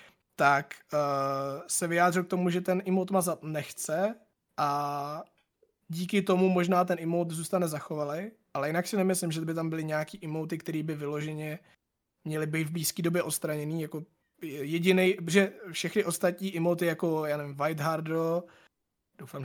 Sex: male